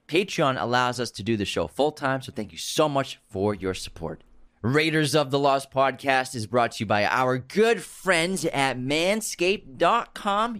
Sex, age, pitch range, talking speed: male, 30-49, 105-145 Hz, 180 wpm